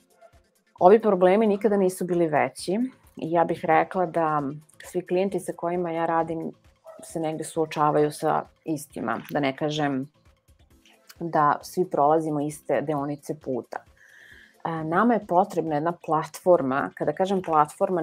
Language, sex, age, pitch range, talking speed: English, female, 30-49, 155-180 Hz, 130 wpm